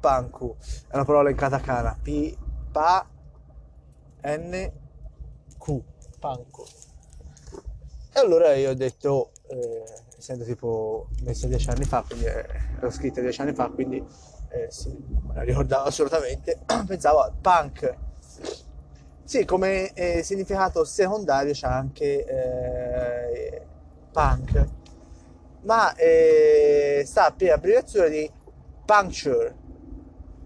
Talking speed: 110 wpm